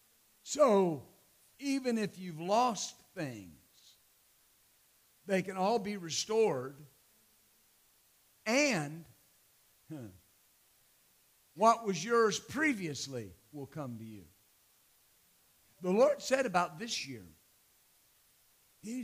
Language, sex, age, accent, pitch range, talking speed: English, male, 50-69, American, 130-190 Hz, 85 wpm